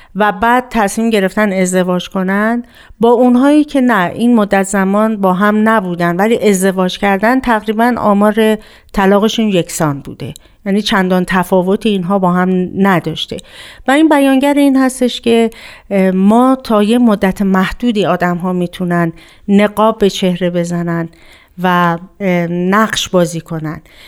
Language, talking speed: Persian, 130 wpm